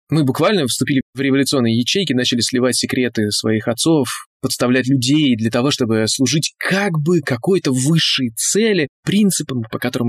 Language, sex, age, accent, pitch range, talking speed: Russian, male, 20-39, native, 110-140 Hz, 150 wpm